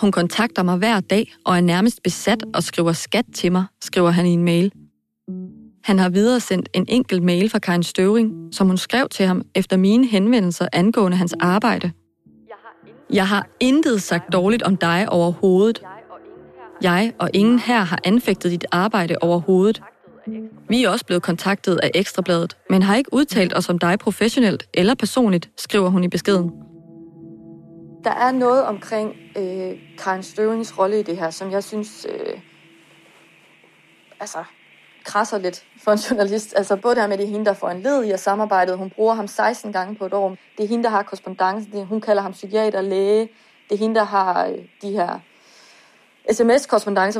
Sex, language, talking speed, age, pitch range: female, Danish, 180 wpm, 30-49, 185-220 Hz